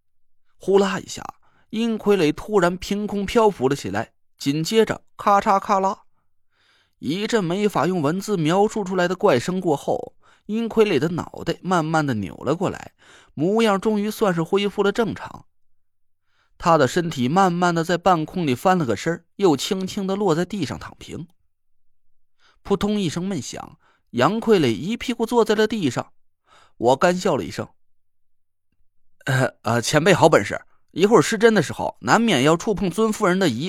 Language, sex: Chinese, male